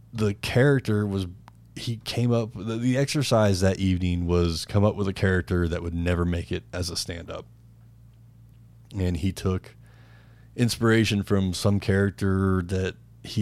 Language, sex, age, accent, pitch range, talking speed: English, male, 30-49, American, 95-115 Hz, 155 wpm